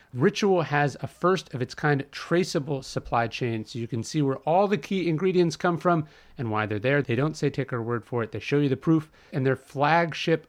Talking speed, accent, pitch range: 215 wpm, American, 115-150 Hz